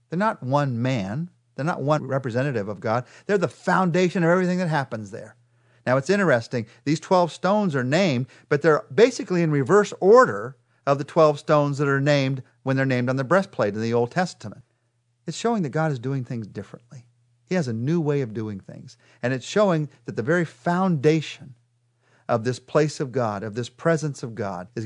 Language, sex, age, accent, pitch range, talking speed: English, male, 40-59, American, 120-165 Hz, 200 wpm